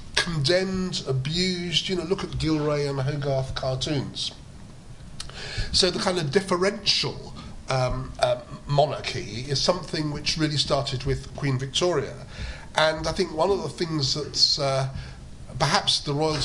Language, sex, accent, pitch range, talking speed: English, male, British, 130-150 Hz, 140 wpm